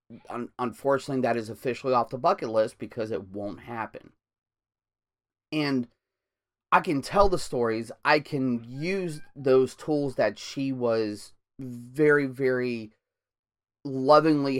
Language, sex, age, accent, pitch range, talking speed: English, male, 30-49, American, 115-140 Hz, 120 wpm